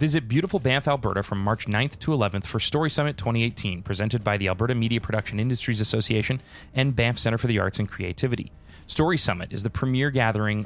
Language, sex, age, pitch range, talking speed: English, male, 20-39, 105-135 Hz, 195 wpm